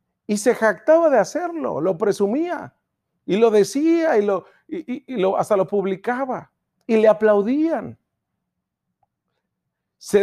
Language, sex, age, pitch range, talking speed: Spanish, male, 40-59, 160-225 Hz, 125 wpm